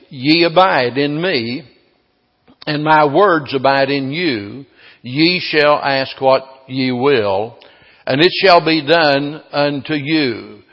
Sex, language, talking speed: male, English, 130 wpm